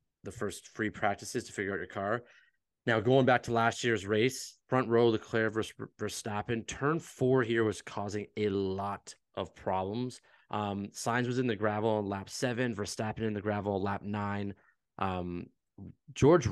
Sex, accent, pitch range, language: male, American, 95-115 Hz, English